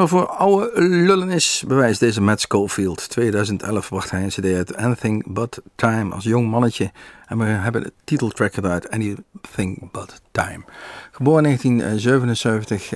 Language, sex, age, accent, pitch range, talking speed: Dutch, male, 50-69, Dutch, 100-140 Hz, 155 wpm